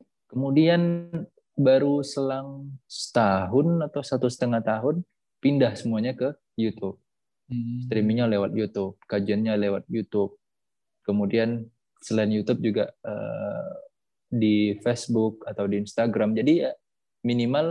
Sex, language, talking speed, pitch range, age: male, Indonesian, 100 wpm, 105-135 Hz, 20-39